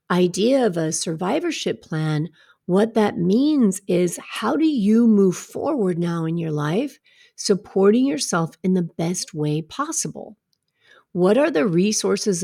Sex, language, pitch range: female, English, 180-240 Hz